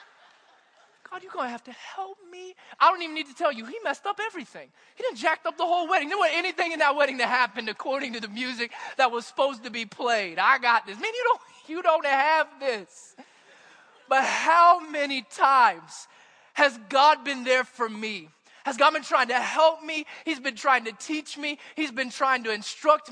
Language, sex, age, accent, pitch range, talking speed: English, male, 20-39, American, 195-295 Hz, 210 wpm